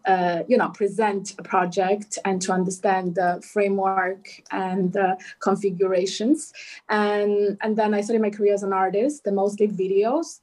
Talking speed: 160 wpm